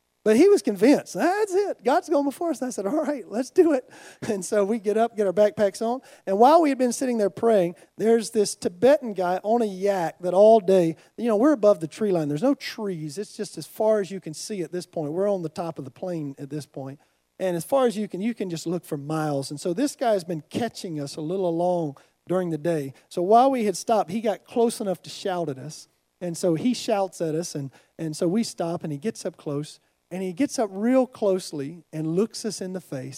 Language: English